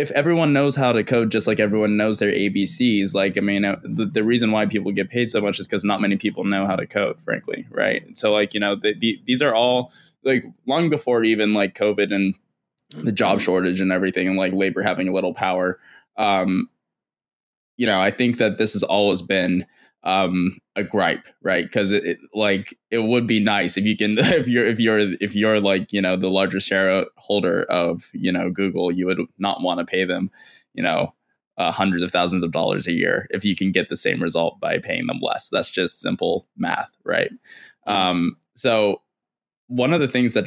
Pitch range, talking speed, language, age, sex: 95-110 Hz, 210 wpm, English, 10-29, male